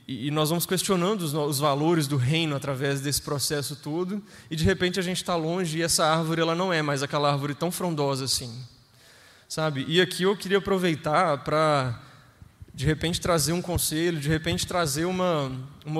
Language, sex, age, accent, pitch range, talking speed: Portuguese, male, 20-39, Brazilian, 140-185 Hz, 180 wpm